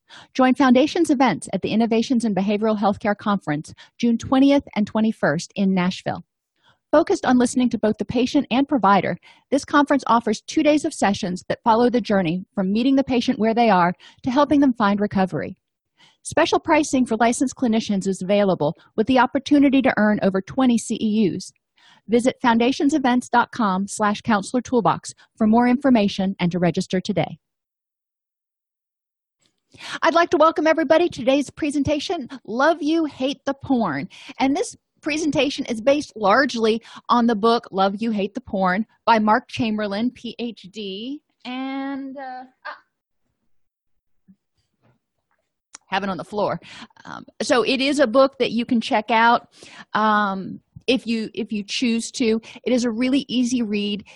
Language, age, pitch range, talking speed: English, 40-59, 205-270 Hz, 155 wpm